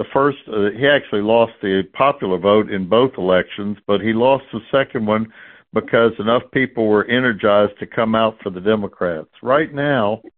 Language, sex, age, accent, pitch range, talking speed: English, male, 60-79, American, 105-125 Hz, 175 wpm